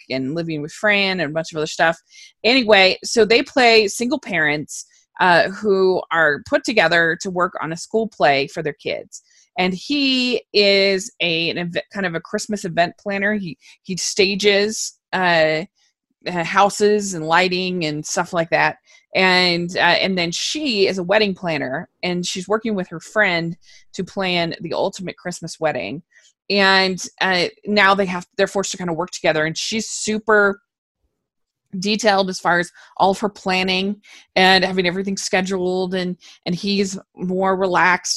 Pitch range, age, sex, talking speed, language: 180-210 Hz, 20-39, female, 165 wpm, English